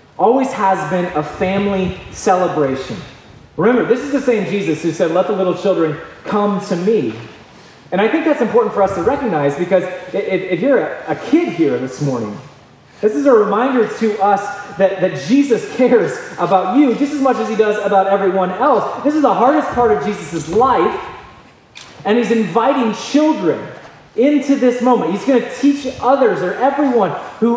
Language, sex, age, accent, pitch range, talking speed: English, male, 30-49, American, 165-235 Hz, 180 wpm